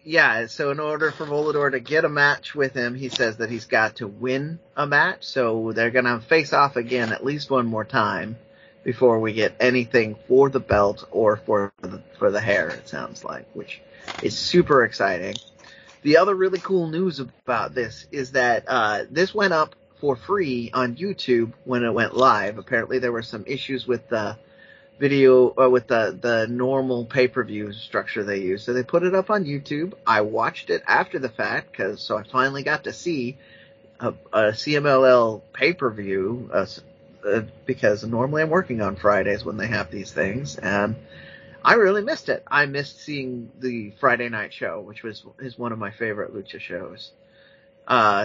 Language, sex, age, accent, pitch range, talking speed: English, male, 30-49, American, 115-150 Hz, 185 wpm